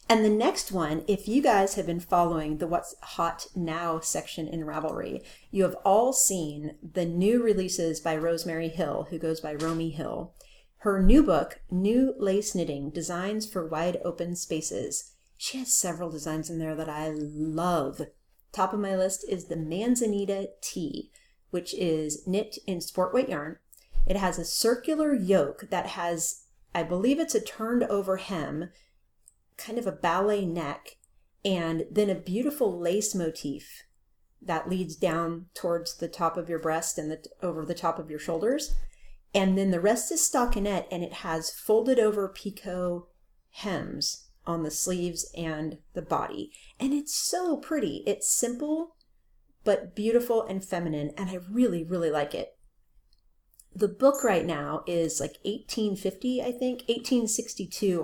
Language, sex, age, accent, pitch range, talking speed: English, female, 30-49, American, 165-210 Hz, 160 wpm